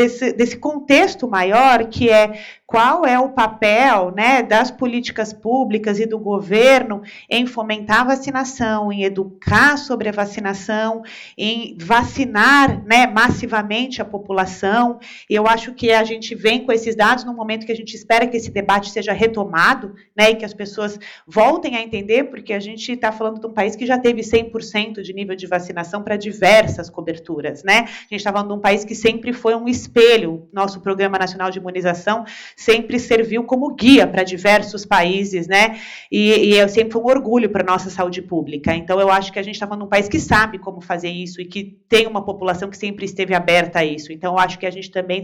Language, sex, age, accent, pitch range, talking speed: Portuguese, female, 30-49, Brazilian, 195-230 Hz, 195 wpm